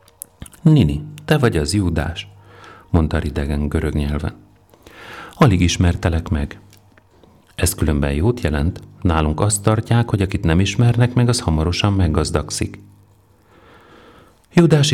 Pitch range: 80-105 Hz